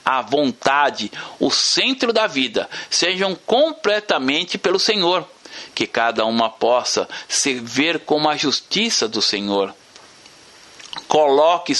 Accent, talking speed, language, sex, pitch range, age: Brazilian, 110 wpm, Portuguese, male, 130-215 Hz, 60-79